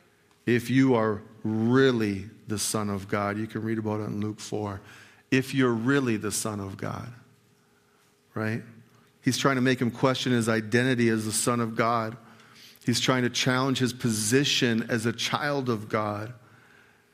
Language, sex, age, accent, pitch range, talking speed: English, male, 50-69, American, 110-130 Hz, 170 wpm